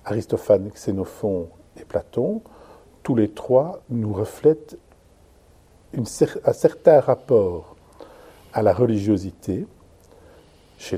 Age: 50-69